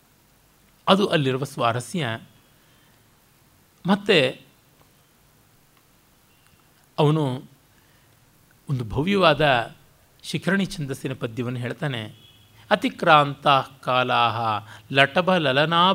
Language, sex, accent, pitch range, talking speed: Kannada, male, native, 135-180 Hz, 50 wpm